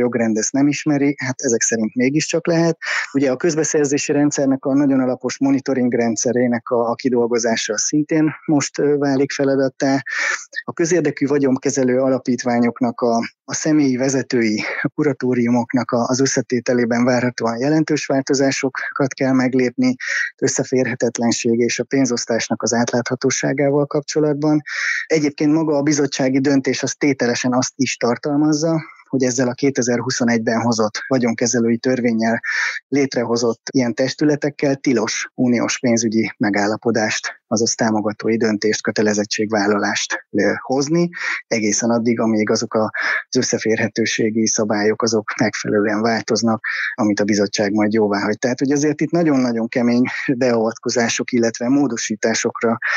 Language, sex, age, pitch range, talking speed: Hungarian, male, 20-39, 115-140 Hz, 115 wpm